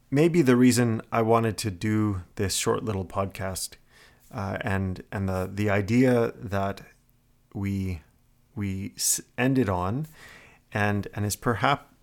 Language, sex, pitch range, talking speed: English, male, 95-120 Hz, 130 wpm